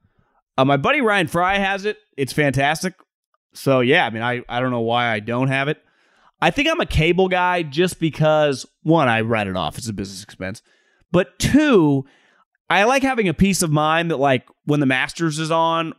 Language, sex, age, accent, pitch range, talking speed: English, male, 30-49, American, 135-180 Hz, 205 wpm